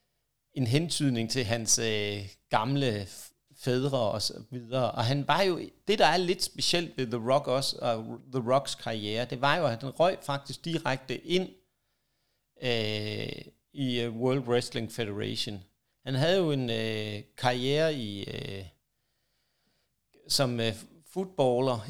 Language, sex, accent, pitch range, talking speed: Danish, male, native, 120-145 Hz, 150 wpm